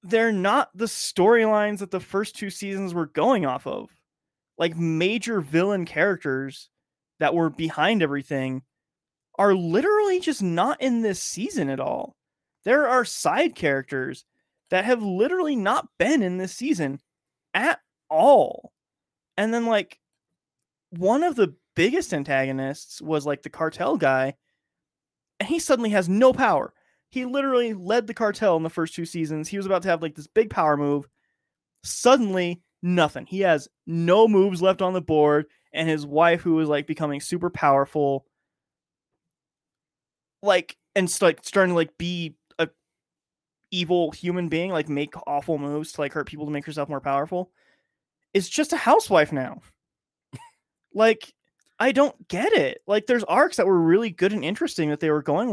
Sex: male